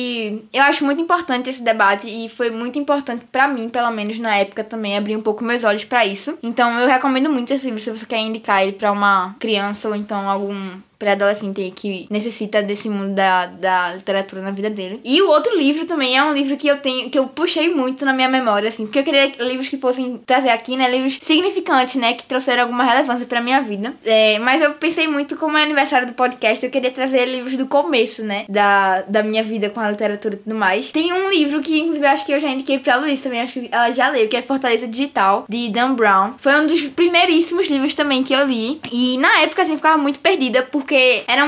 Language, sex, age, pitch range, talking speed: Portuguese, female, 10-29, 215-275 Hz, 240 wpm